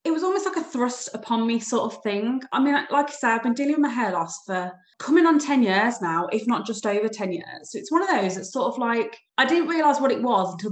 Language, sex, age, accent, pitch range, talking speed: English, female, 20-39, British, 210-265 Hz, 285 wpm